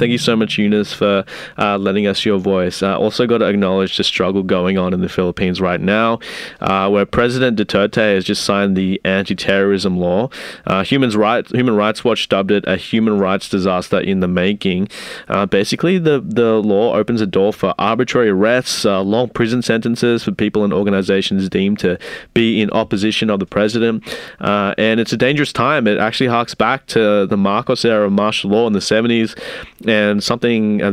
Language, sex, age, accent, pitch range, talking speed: English, male, 20-39, Australian, 95-115 Hz, 190 wpm